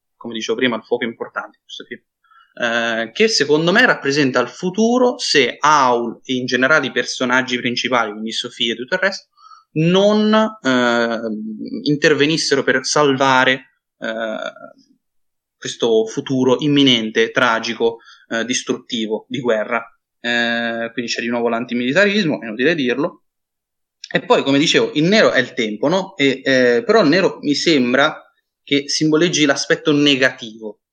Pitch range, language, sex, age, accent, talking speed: 115-150 Hz, Italian, male, 20-39, native, 135 wpm